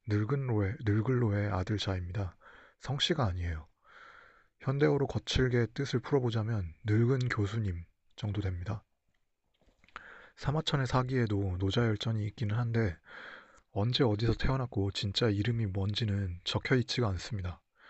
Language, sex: Korean, male